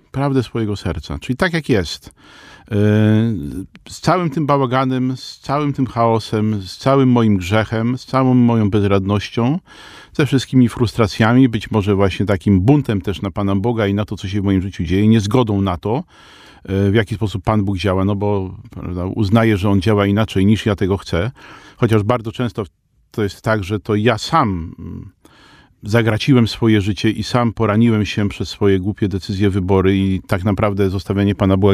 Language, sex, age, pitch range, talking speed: Polish, male, 40-59, 95-115 Hz, 175 wpm